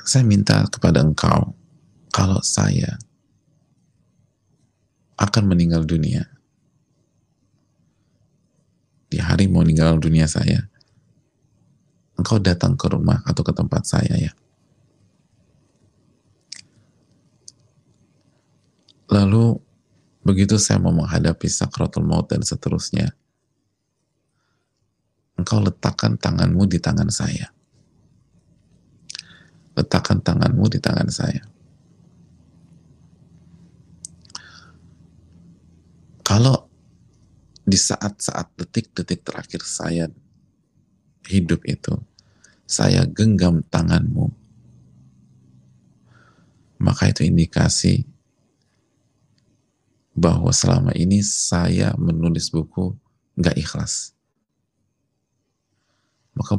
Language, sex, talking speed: Indonesian, male, 70 wpm